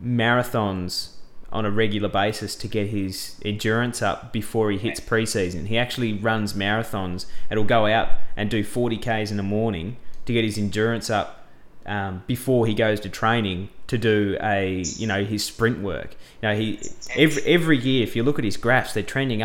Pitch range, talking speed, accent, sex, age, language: 105-125 Hz, 180 wpm, Australian, male, 20-39, English